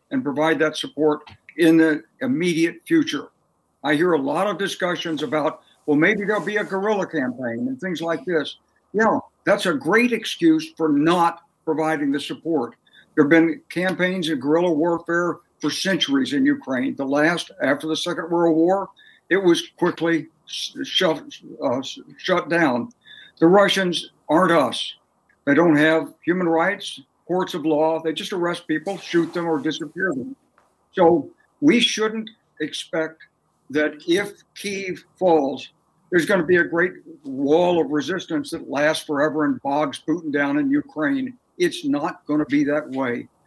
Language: English